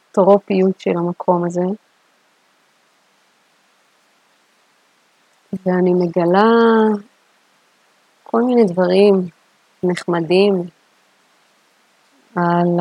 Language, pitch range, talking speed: Hebrew, 175-210 Hz, 50 wpm